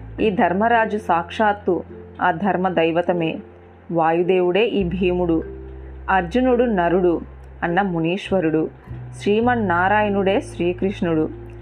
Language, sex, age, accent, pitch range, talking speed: Telugu, female, 30-49, native, 165-210 Hz, 75 wpm